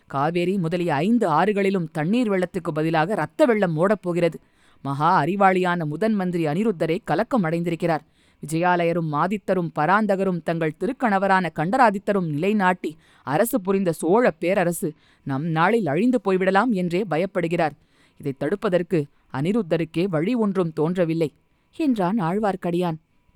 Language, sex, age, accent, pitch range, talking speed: Tamil, female, 20-39, native, 160-200 Hz, 110 wpm